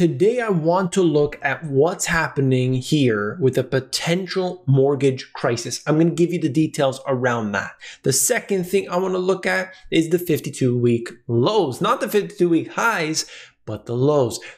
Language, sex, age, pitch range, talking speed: English, male, 20-39, 125-170 Hz, 175 wpm